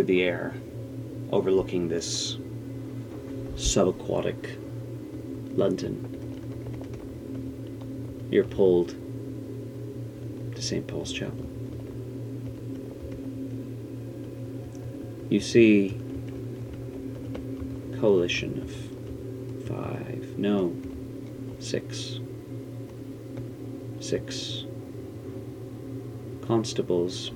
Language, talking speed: English, 50 wpm